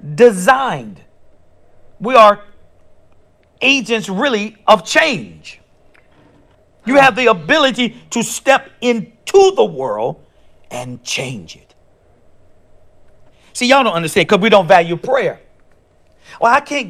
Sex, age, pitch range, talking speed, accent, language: male, 50-69, 165-275 Hz, 110 wpm, American, English